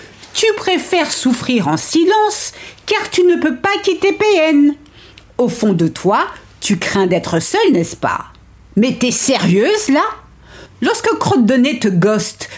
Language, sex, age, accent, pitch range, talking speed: French, female, 50-69, French, 225-355 Hz, 150 wpm